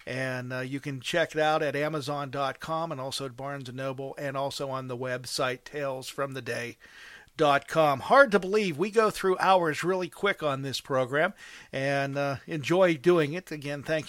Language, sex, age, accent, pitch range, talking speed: English, male, 50-69, American, 145-175 Hz, 170 wpm